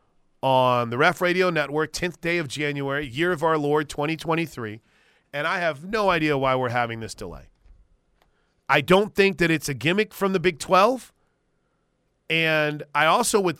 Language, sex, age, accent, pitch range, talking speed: English, male, 30-49, American, 140-180 Hz, 170 wpm